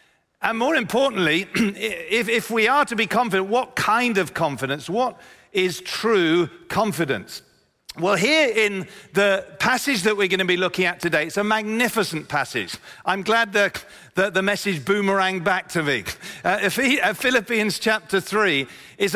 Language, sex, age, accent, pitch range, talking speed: English, male, 50-69, British, 175-220 Hz, 155 wpm